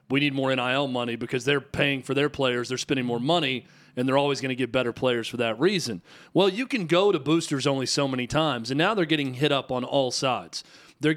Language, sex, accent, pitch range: English, male, American, 135-165 Hz